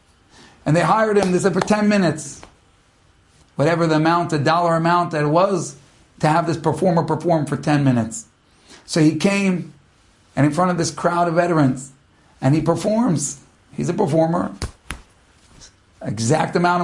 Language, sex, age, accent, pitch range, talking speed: English, male, 50-69, American, 160-255 Hz, 160 wpm